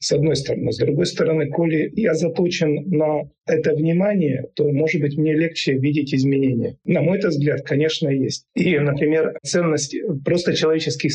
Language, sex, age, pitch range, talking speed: Russian, male, 40-59, 135-160 Hz, 155 wpm